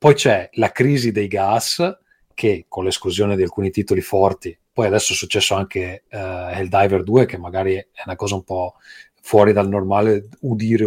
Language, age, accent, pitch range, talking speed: Italian, 30-49, native, 95-110 Hz, 170 wpm